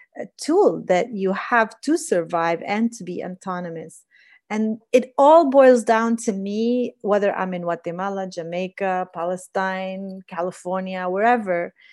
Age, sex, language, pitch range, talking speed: 30-49, female, English, 180-220 Hz, 130 wpm